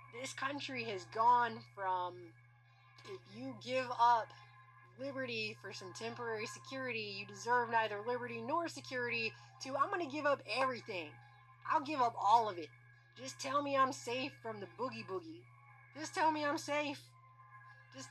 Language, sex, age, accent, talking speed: English, female, 20-39, American, 160 wpm